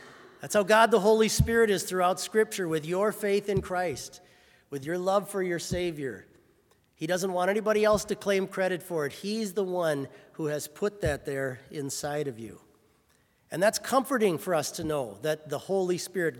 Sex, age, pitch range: male, 40-59, 140-180 Hz